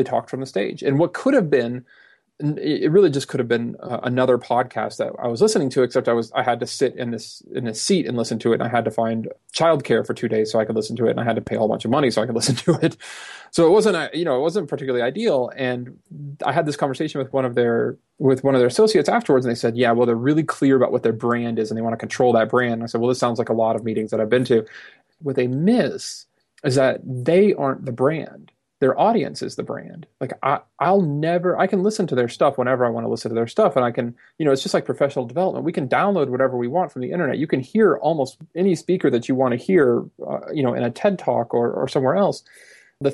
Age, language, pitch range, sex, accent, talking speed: 30-49, English, 120-155 Hz, male, American, 280 wpm